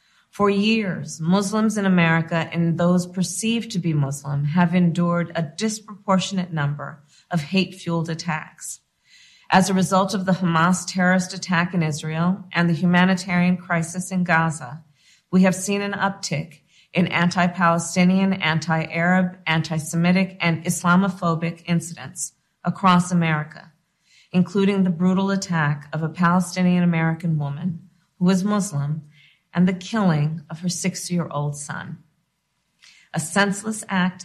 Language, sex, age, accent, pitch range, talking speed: English, female, 40-59, American, 165-190 Hz, 125 wpm